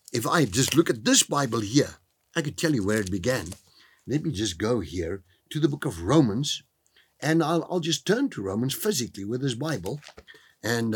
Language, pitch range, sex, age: English, 105-155 Hz, male, 60-79